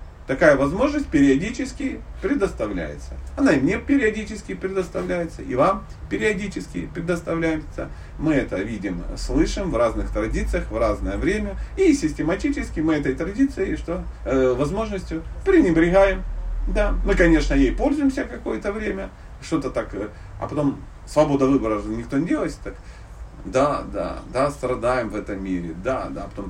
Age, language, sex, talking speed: 40-59, Russian, male, 140 wpm